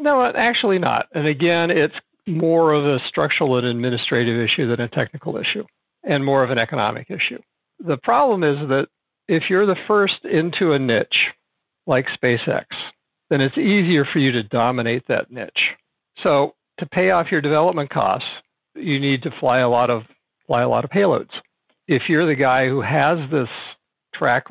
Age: 60-79